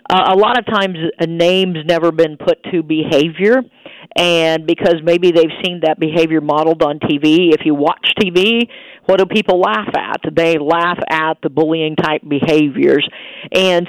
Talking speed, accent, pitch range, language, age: 165 wpm, American, 150-180 Hz, English, 50-69